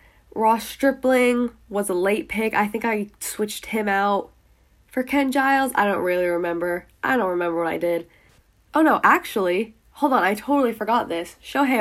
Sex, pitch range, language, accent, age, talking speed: female, 180-240 Hz, English, American, 10-29, 180 wpm